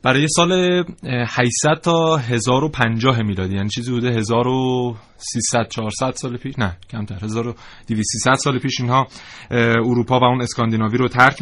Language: Persian